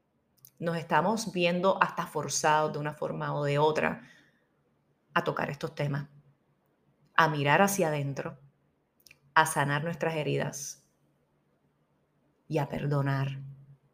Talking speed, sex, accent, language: 110 wpm, female, American, Spanish